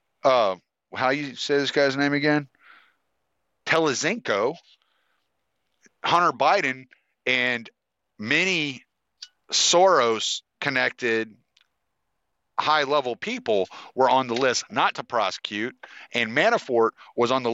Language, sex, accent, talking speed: English, male, American, 105 wpm